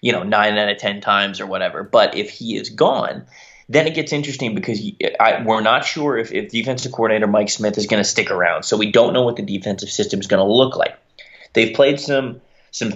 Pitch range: 100-115 Hz